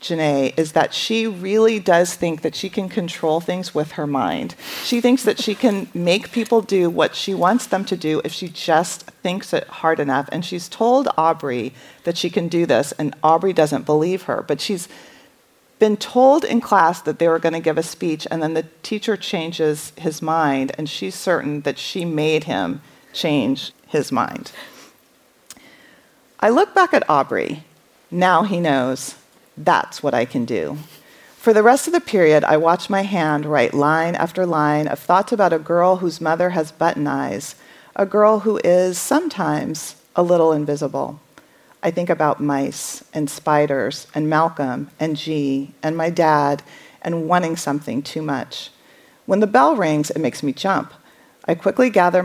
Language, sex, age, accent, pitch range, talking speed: English, female, 40-59, American, 155-200 Hz, 175 wpm